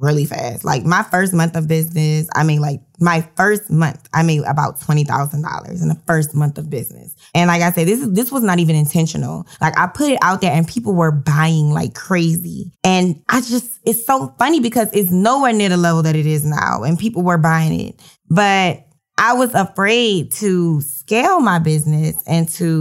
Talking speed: 205 wpm